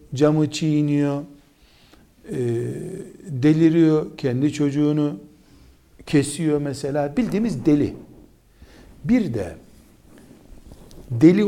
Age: 60-79